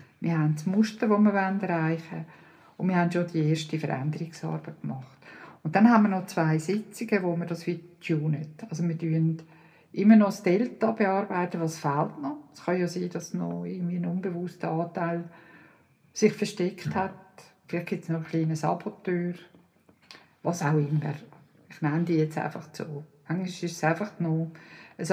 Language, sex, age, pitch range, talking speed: German, female, 50-69, 165-195 Hz, 180 wpm